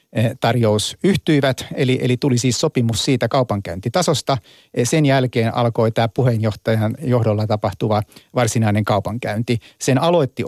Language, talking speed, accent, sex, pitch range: Finnish, 115 wpm, native, male, 115-140 Hz